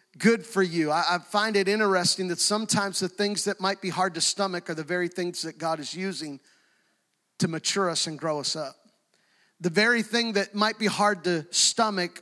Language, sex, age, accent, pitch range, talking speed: English, male, 40-59, American, 190-230 Hz, 200 wpm